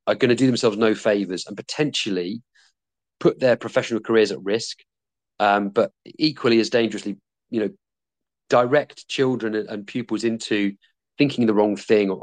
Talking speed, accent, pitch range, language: 155 wpm, British, 105-130 Hz, English